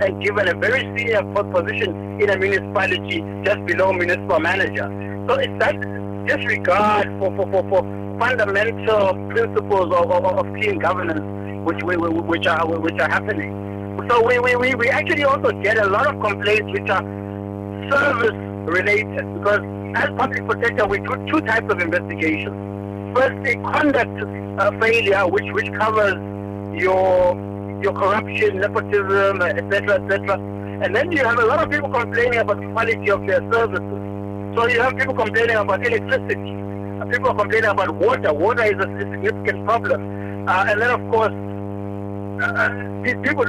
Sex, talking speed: male, 155 wpm